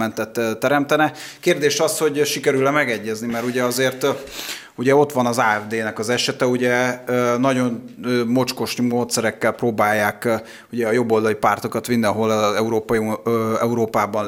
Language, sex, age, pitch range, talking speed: Hungarian, male, 30-49, 110-130 Hz, 120 wpm